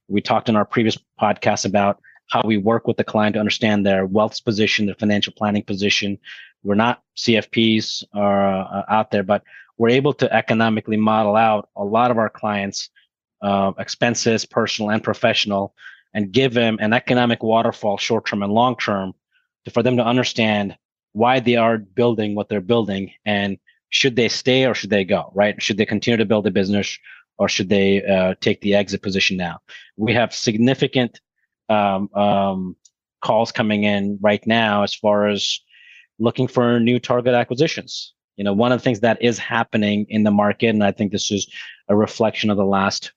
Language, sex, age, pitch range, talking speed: English, male, 30-49, 100-115 Hz, 180 wpm